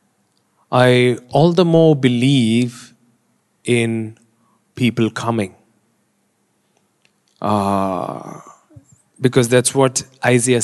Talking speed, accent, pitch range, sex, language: 75 wpm, Indian, 115-150 Hz, male, English